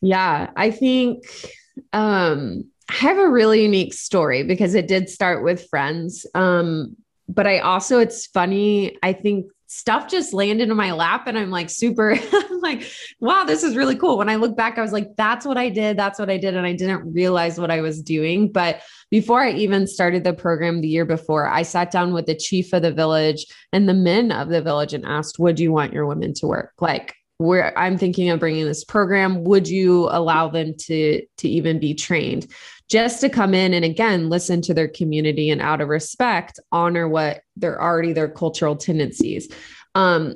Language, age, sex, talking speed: English, 20-39, female, 205 wpm